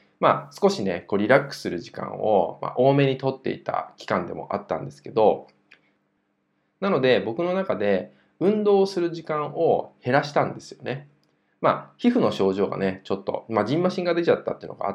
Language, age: Japanese, 20-39